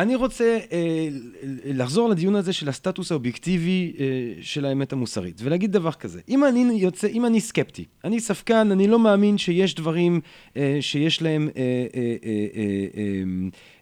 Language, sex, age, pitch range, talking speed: Hebrew, male, 30-49, 140-205 Hz, 150 wpm